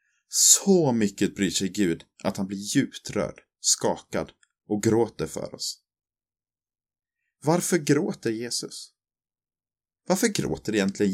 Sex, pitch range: male, 95-130 Hz